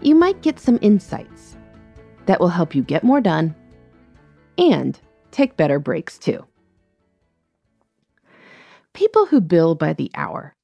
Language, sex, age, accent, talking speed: English, female, 30-49, American, 130 wpm